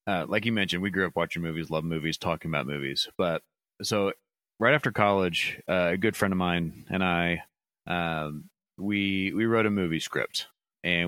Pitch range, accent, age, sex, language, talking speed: 85-105 Hz, American, 30-49, male, English, 190 wpm